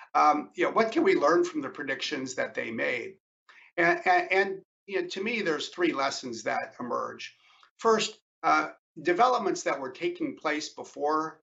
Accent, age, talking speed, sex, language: American, 50-69, 175 wpm, male, English